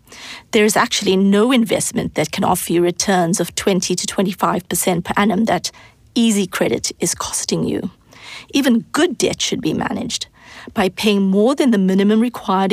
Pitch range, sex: 190-235 Hz, female